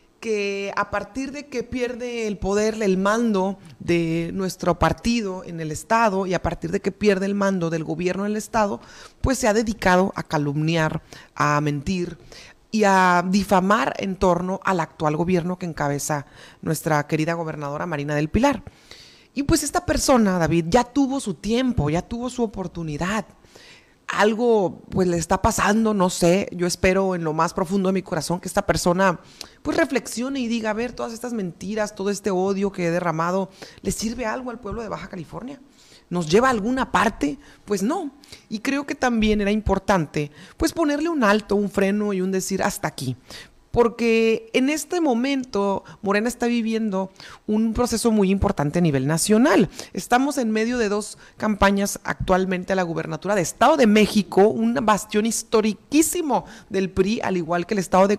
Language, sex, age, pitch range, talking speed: Spanish, female, 30-49, 175-230 Hz, 175 wpm